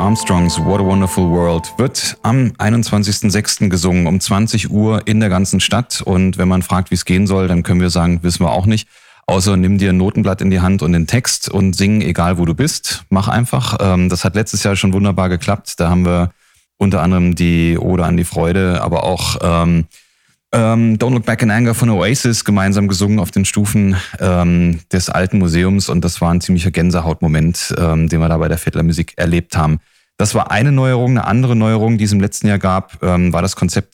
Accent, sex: German, male